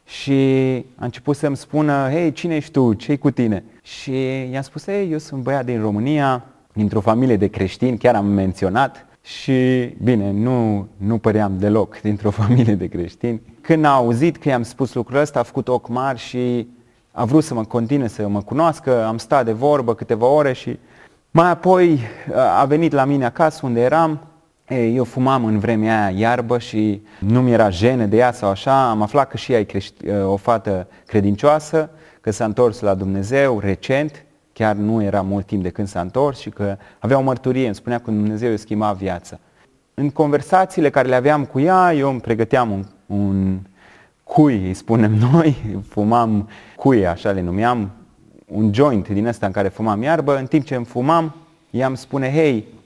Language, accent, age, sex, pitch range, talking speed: Romanian, native, 30-49, male, 105-140 Hz, 185 wpm